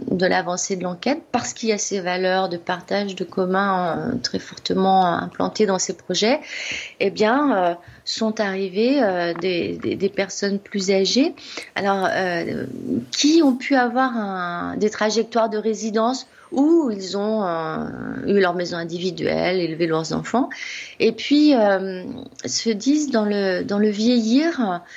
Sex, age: female, 30-49